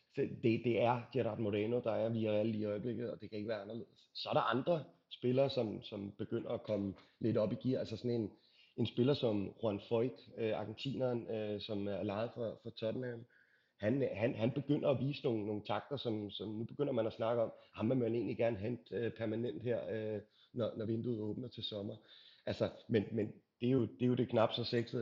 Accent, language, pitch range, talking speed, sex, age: native, Danish, 110-120 Hz, 225 wpm, male, 30-49